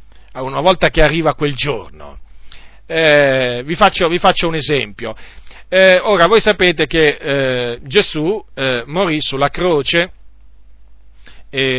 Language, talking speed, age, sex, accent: Italian, 120 wpm, 40-59, male, native